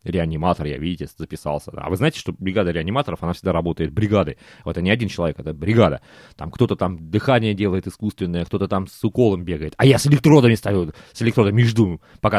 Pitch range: 90-125 Hz